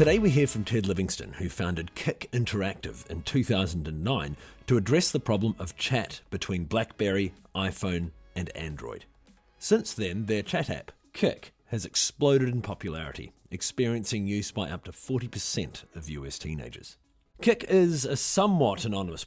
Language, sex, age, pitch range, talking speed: English, male, 40-59, 90-130 Hz, 145 wpm